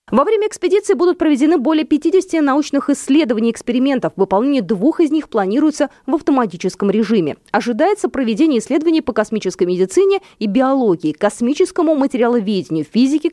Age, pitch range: 20-39, 205-320 Hz